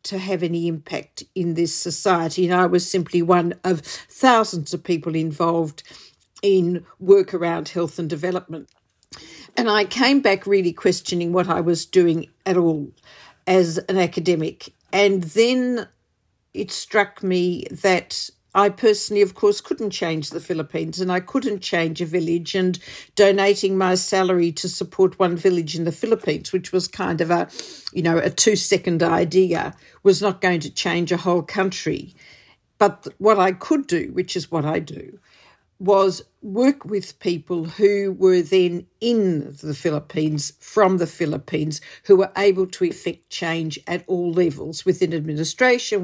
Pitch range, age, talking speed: 170-195 Hz, 50-69, 160 wpm